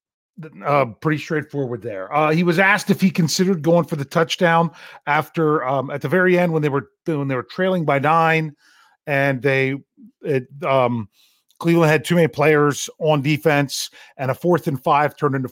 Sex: male